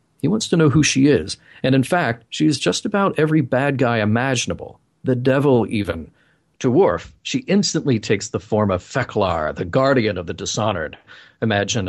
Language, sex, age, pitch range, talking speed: English, male, 40-59, 100-135 Hz, 180 wpm